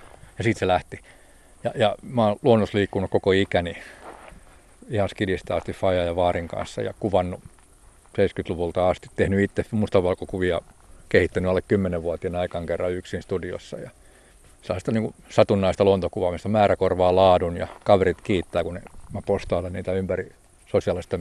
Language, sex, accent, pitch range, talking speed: Finnish, male, native, 90-100 Hz, 135 wpm